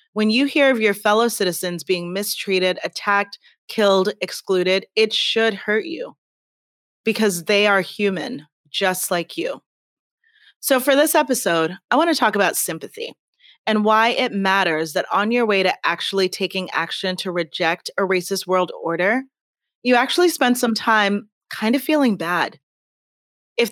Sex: female